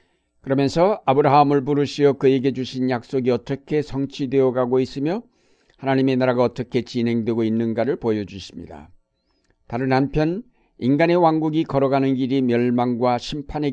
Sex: male